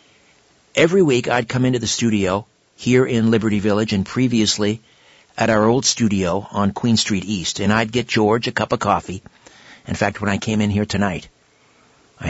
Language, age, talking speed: English, 50-69, 185 wpm